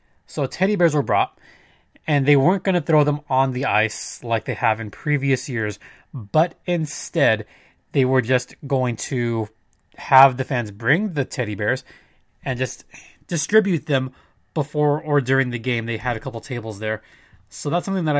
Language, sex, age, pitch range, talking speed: English, male, 20-39, 125-155 Hz, 180 wpm